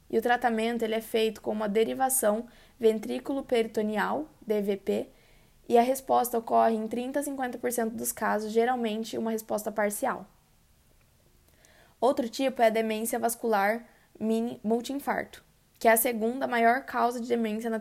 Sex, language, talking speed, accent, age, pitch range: female, Portuguese, 140 wpm, Brazilian, 20-39, 220-245 Hz